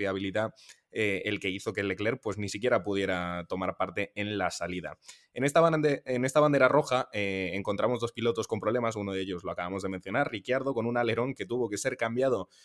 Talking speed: 215 wpm